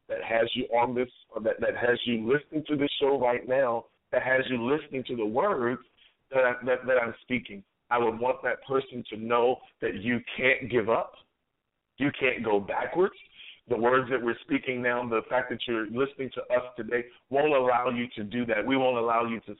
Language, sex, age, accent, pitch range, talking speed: English, male, 40-59, American, 115-135 Hz, 215 wpm